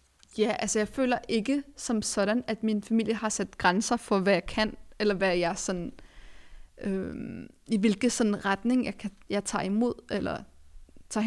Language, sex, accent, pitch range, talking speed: Danish, female, native, 200-230 Hz, 175 wpm